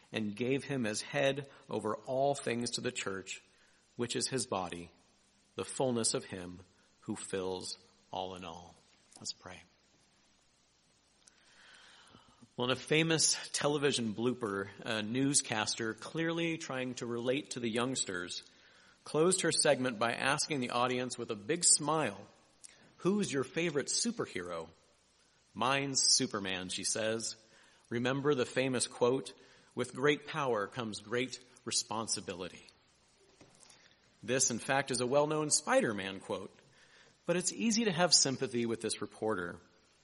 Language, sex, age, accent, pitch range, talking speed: English, male, 50-69, American, 110-140 Hz, 130 wpm